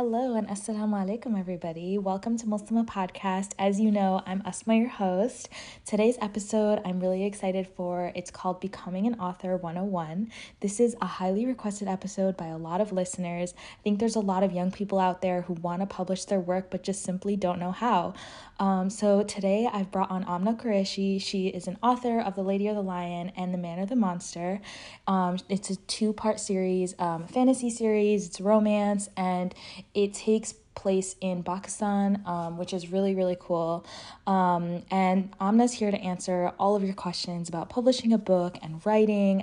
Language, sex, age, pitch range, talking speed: English, female, 20-39, 180-210 Hz, 185 wpm